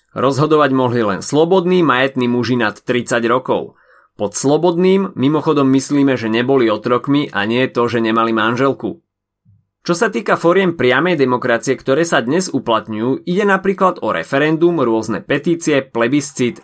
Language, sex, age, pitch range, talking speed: Slovak, male, 30-49, 120-170 Hz, 145 wpm